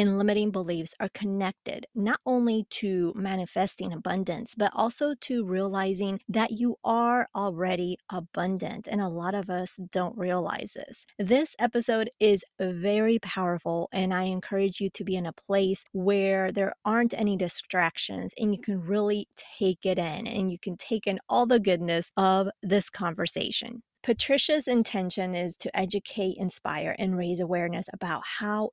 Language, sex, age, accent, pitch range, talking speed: English, female, 30-49, American, 185-225 Hz, 155 wpm